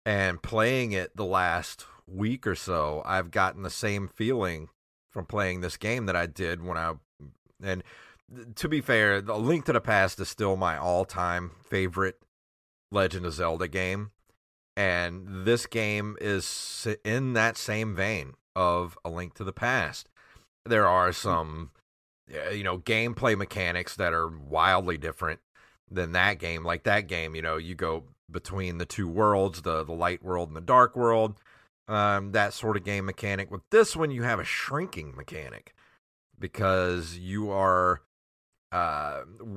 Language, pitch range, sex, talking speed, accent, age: English, 90-115 Hz, male, 160 wpm, American, 30-49